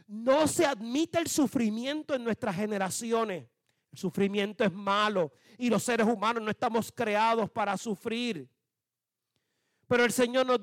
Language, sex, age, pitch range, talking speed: Spanish, male, 40-59, 195-255 Hz, 140 wpm